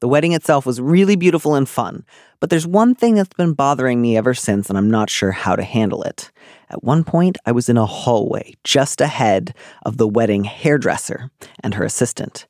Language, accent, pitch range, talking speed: English, American, 110-150 Hz, 205 wpm